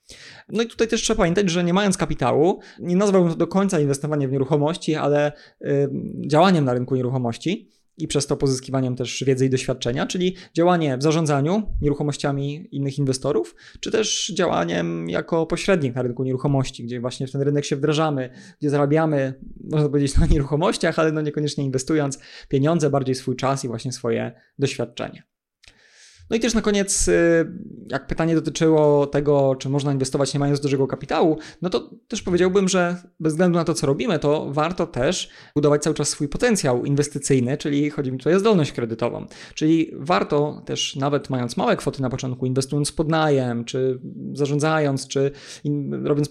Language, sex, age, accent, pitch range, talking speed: Polish, male, 20-39, native, 135-165 Hz, 165 wpm